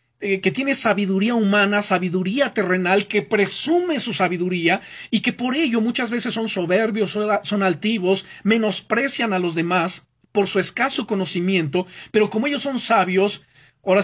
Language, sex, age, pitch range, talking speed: Spanish, male, 40-59, 165-215 Hz, 145 wpm